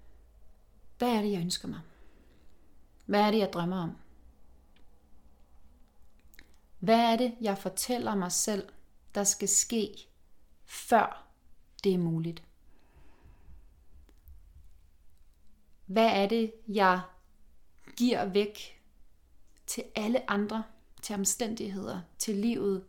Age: 30-49